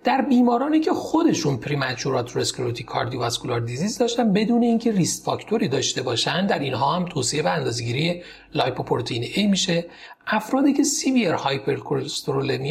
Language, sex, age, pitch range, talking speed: Persian, male, 40-59, 135-215 Hz, 130 wpm